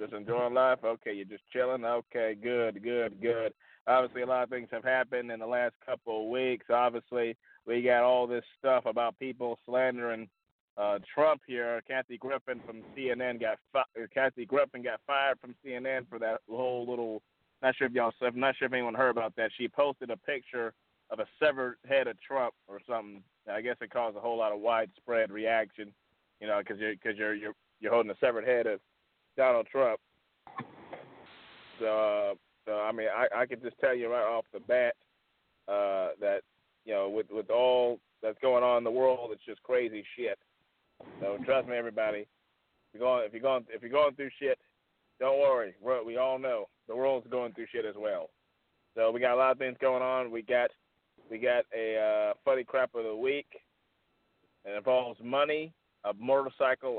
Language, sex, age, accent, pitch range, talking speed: English, male, 30-49, American, 110-130 Hz, 195 wpm